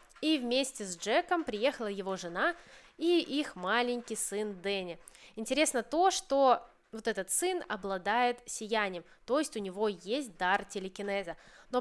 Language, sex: Russian, female